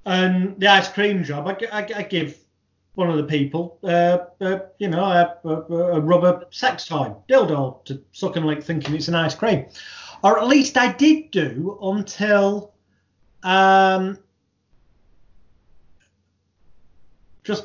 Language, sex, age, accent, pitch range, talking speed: English, male, 30-49, British, 150-190 Hz, 145 wpm